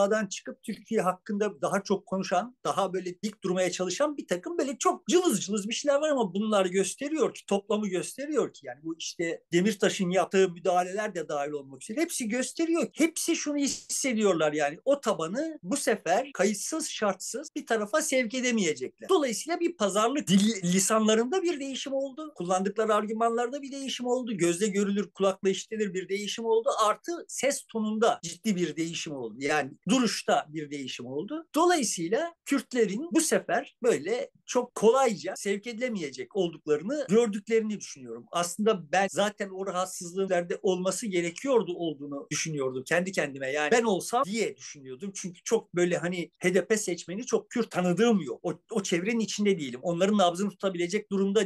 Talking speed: 155 wpm